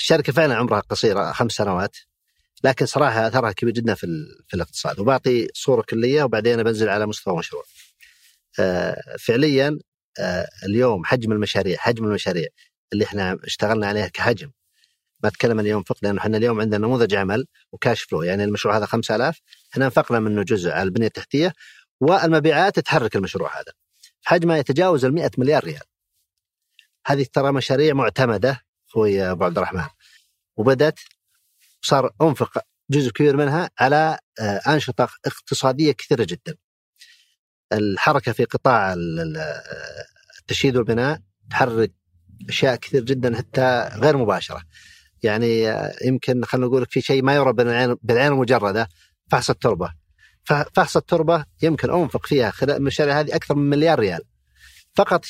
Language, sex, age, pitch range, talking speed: Arabic, male, 40-59, 105-145 Hz, 135 wpm